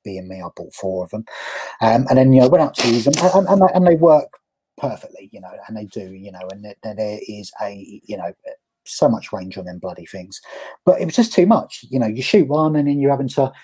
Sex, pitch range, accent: male, 105-130 Hz, British